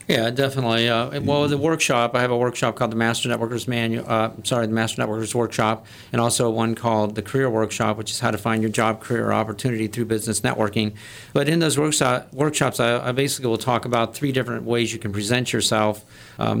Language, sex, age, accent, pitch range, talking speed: English, male, 50-69, American, 110-125 Hz, 220 wpm